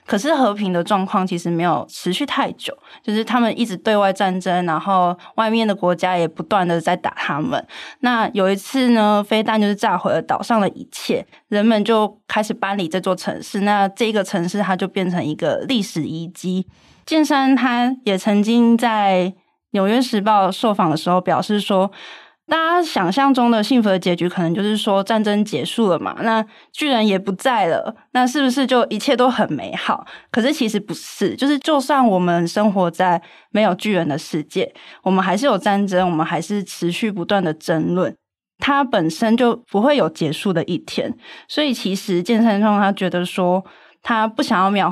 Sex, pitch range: female, 180-230 Hz